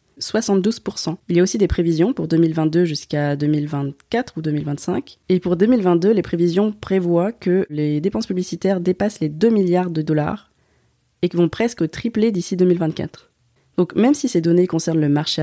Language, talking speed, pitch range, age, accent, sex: French, 165 wpm, 155-195 Hz, 20-39, French, female